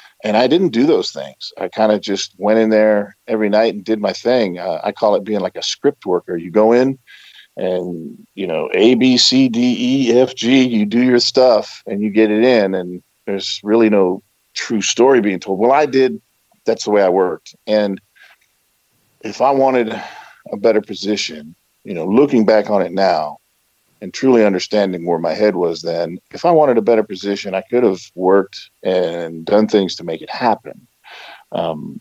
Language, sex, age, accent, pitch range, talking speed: English, male, 50-69, American, 95-125 Hz, 200 wpm